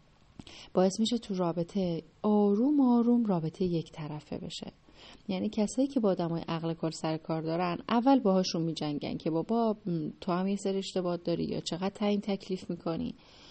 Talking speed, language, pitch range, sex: 160 wpm, Persian, 165-205 Hz, female